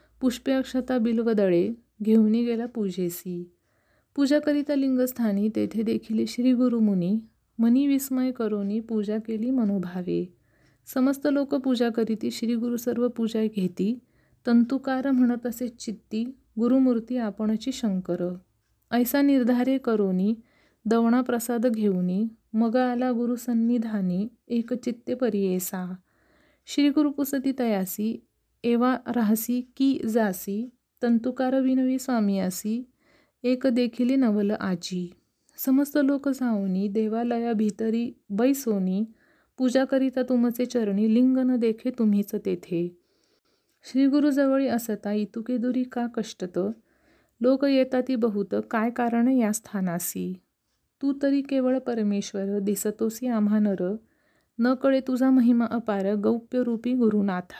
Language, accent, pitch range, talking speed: Marathi, native, 210-255 Hz, 100 wpm